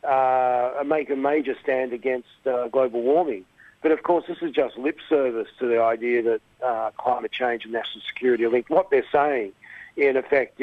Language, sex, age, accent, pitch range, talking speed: English, male, 50-69, Australian, 120-145 Hz, 190 wpm